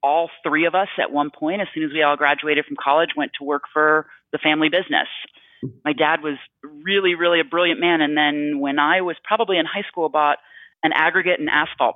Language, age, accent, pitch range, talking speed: English, 30-49, American, 140-180 Hz, 220 wpm